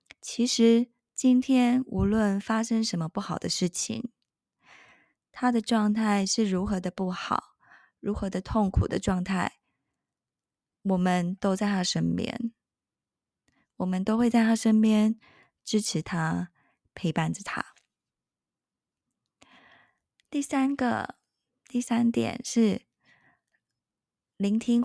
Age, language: 20-39, Chinese